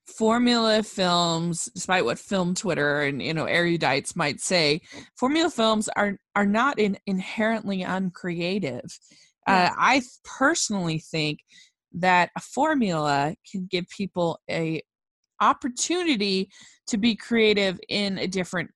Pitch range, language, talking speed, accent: 170-220 Hz, English, 120 wpm, American